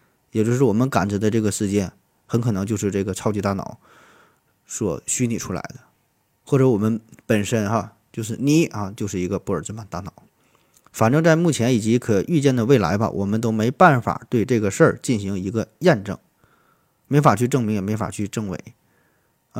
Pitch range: 105-135 Hz